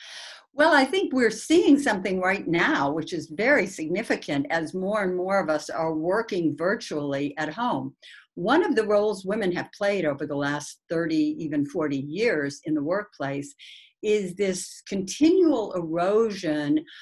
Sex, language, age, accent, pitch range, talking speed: female, English, 60-79, American, 155-215 Hz, 155 wpm